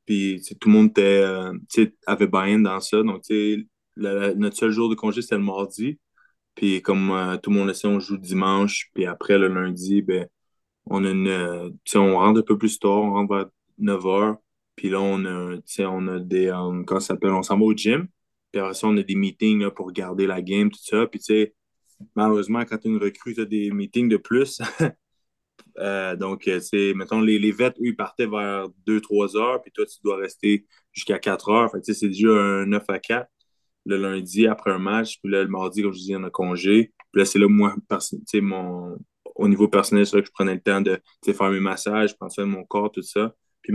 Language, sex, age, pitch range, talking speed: French, male, 20-39, 95-110 Hz, 225 wpm